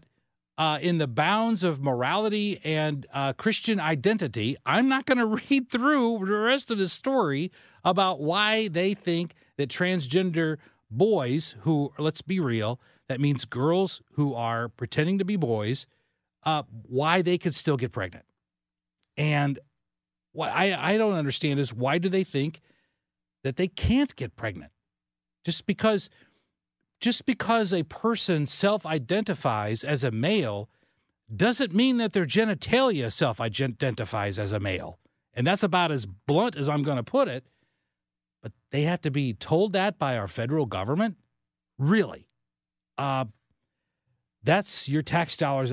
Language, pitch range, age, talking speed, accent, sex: English, 120-195 Hz, 50-69, 145 wpm, American, male